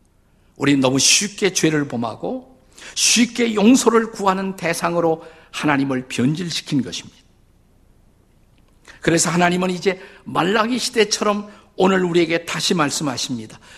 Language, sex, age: Korean, male, 50-69